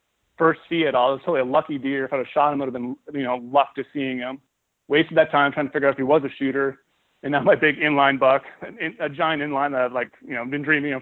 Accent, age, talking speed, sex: American, 30-49, 305 wpm, male